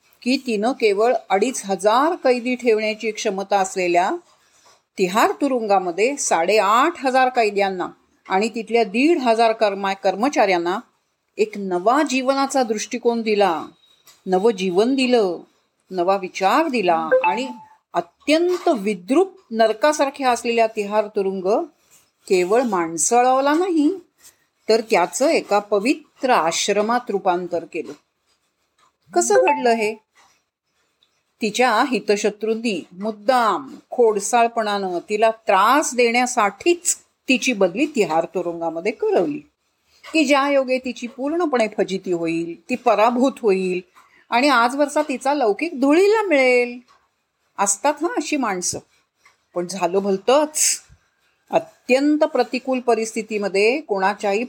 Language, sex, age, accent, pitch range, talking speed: Marathi, female, 40-59, native, 200-275 Hz, 95 wpm